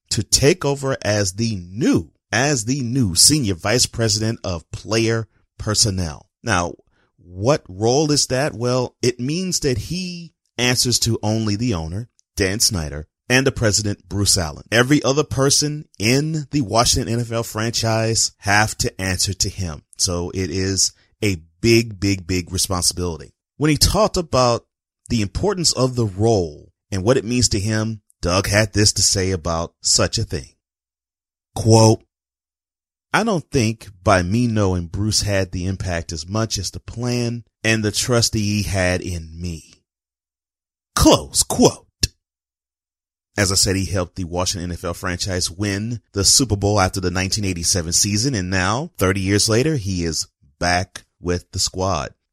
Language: English